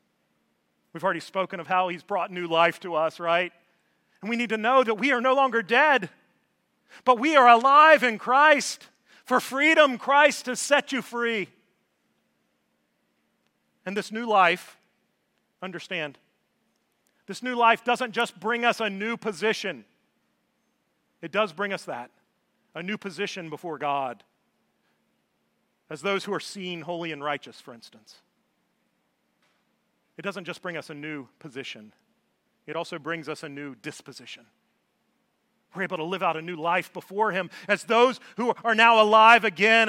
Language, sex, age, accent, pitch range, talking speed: English, male, 40-59, American, 170-235 Hz, 155 wpm